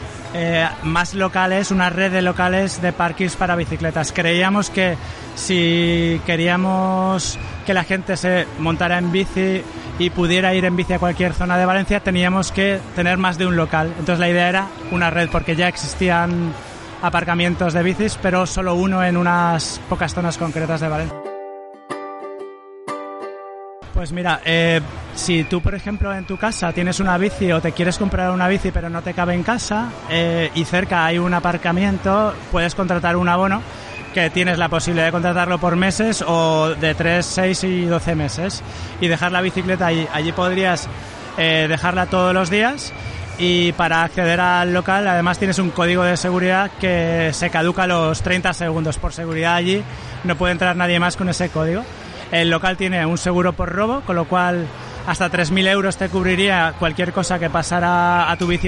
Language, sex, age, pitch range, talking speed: Spanish, male, 30-49, 165-185 Hz, 180 wpm